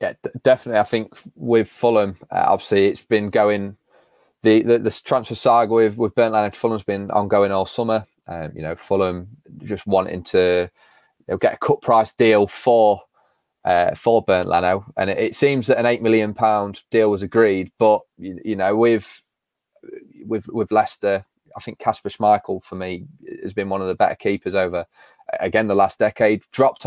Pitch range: 100-115 Hz